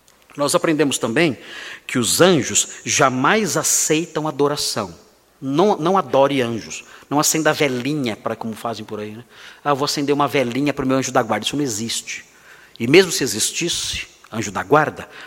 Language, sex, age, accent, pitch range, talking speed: Portuguese, male, 50-69, Brazilian, 115-150 Hz, 165 wpm